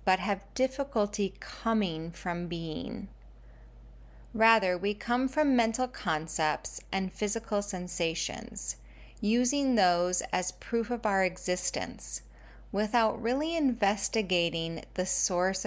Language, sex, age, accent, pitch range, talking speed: English, female, 30-49, American, 165-215 Hz, 105 wpm